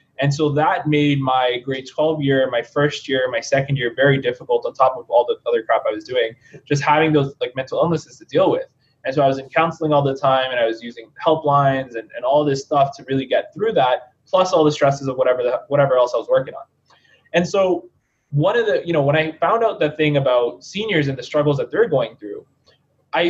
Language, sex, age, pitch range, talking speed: English, male, 20-39, 135-170 Hz, 245 wpm